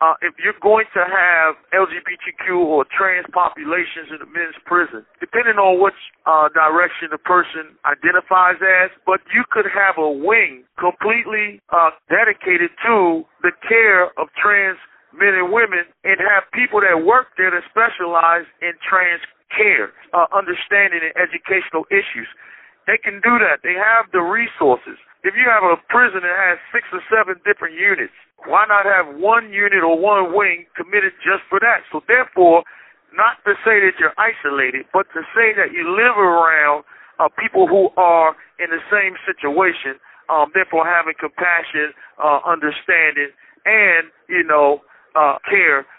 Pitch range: 165-200 Hz